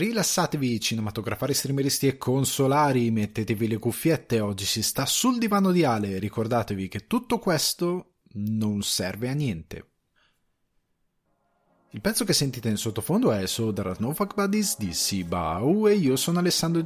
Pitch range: 105-155 Hz